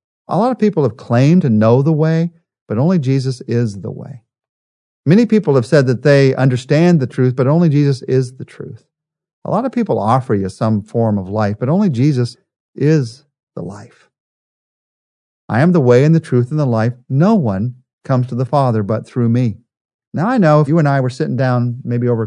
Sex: male